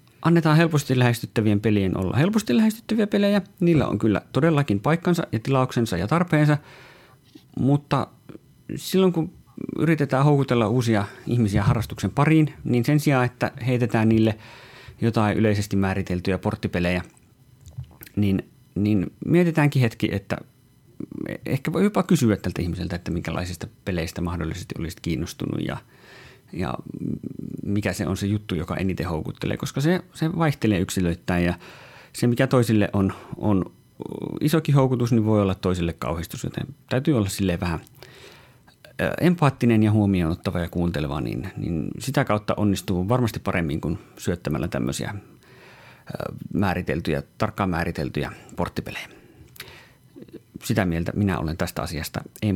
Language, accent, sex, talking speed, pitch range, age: Finnish, native, male, 130 wpm, 95-140 Hz, 30-49